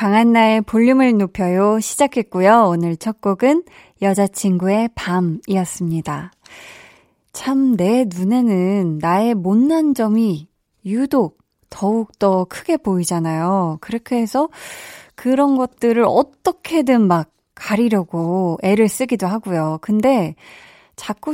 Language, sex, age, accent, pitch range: Korean, female, 20-39, native, 190-260 Hz